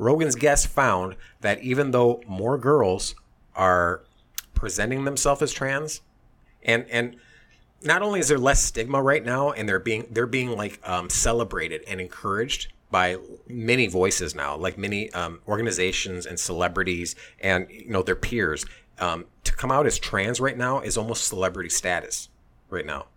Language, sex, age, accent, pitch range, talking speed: English, male, 30-49, American, 90-120 Hz, 160 wpm